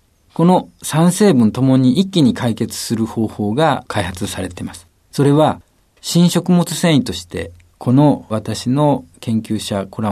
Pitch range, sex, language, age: 95-135 Hz, male, Japanese, 50-69